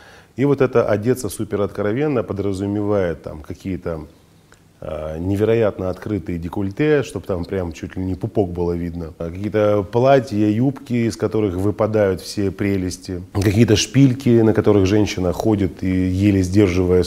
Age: 20-39